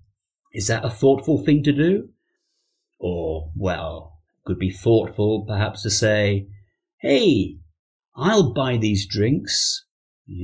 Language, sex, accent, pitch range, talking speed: English, male, British, 95-140 Hz, 125 wpm